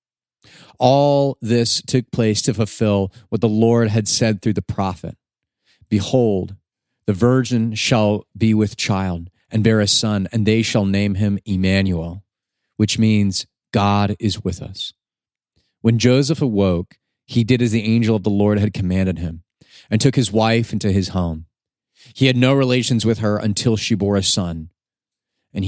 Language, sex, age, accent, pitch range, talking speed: English, male, 30-49, American, 105-140 Hz, 165 wpm